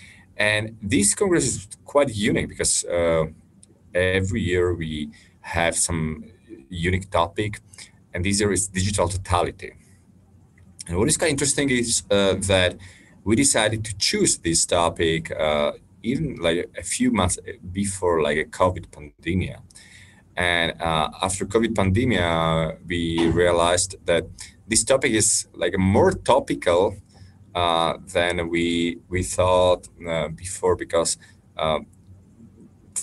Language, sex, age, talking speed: English, male, 30-49, 130 wpm